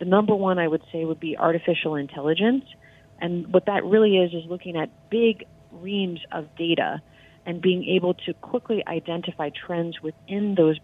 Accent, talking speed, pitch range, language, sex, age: American, 170 wpm, 160-180 Hz, English, female, 30-49